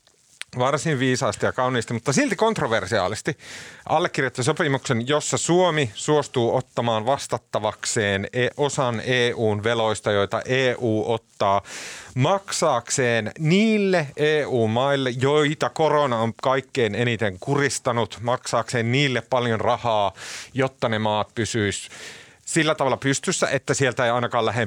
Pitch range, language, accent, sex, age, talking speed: 110-150 Hz, Finnish, native, male, 30-49, 105 wpm